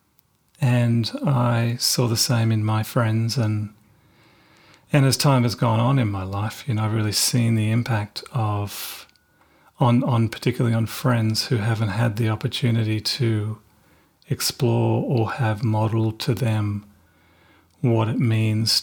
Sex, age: male, 40-59